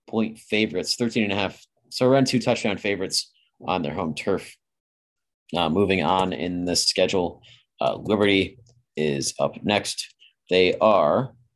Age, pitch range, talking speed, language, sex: 30-49, 90-115 Hz, 145 wpm, English, male